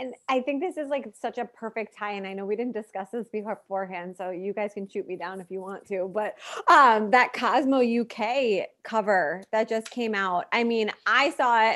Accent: American